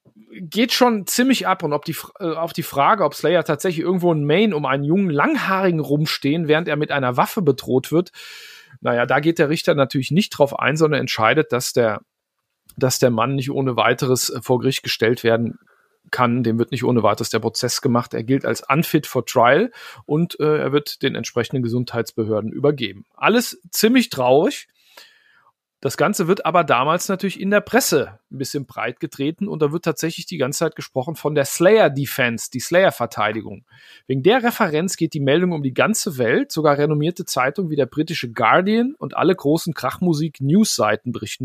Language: German